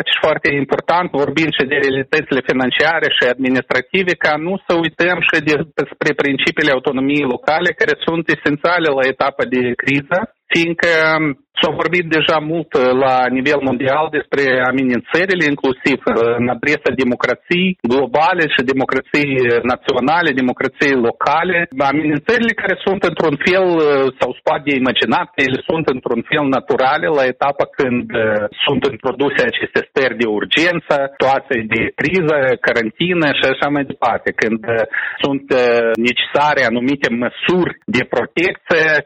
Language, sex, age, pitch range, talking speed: Romanian, male, 40-59, 130-165 Hz, 130 wpm